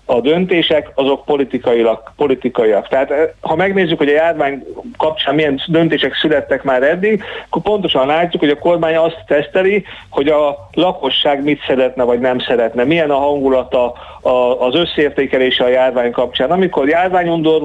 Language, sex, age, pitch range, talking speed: Hungarian, male, 40-59, 130-155 Hz, 145 wpm